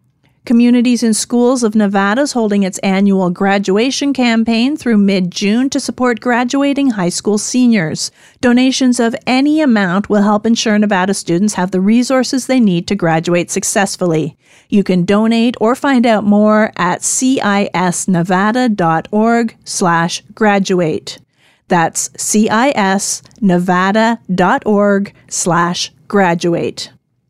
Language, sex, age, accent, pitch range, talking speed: English, female, 40-59, American, 190-245 Hz, 105 wpm